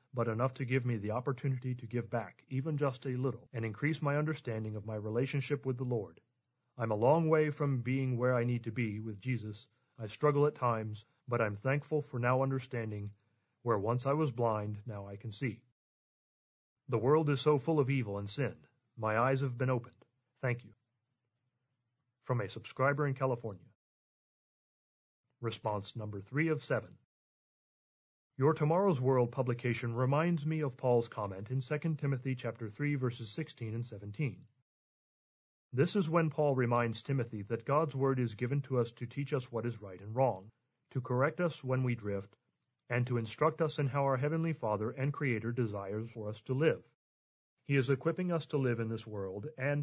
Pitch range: 115-140 Hz